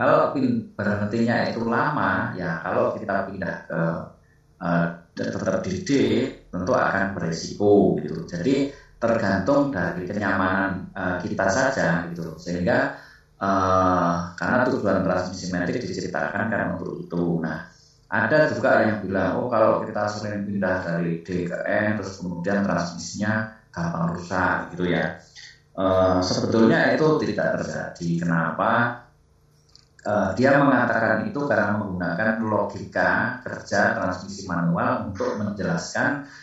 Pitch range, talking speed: 85-110 Hz, 120 wpm